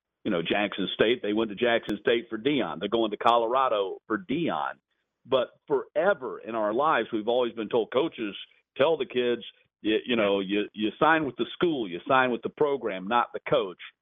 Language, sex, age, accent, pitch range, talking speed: English, male, 50-69, American, 110-165 Hz, 200 wpm